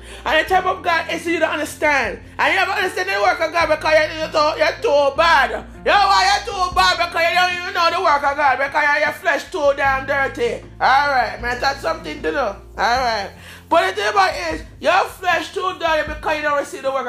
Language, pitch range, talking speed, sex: English, 300-365 Hz, 225 wpm, male